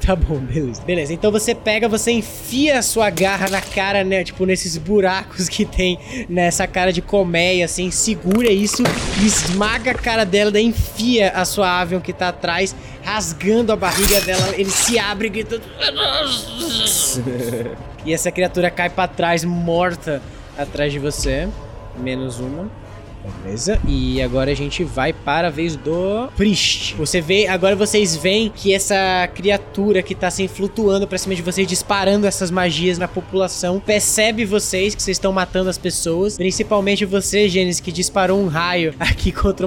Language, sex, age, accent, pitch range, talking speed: Portuguese, male, 20-39, Brazilian, 170-200 Hz, 165 wpm